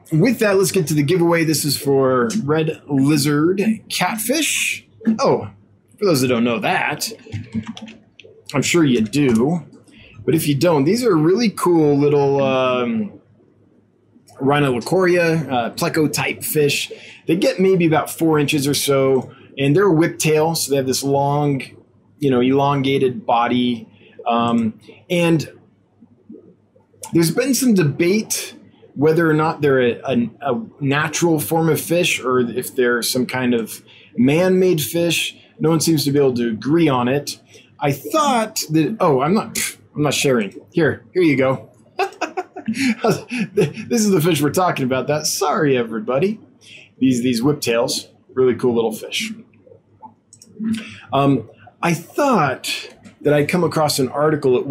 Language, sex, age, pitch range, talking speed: English, male, 20-39, 125-175 Hz, 150 wpm